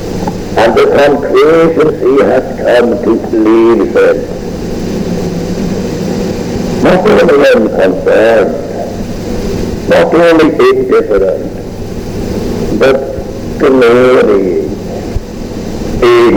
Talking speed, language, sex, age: 60 wpm, English, male, 60-79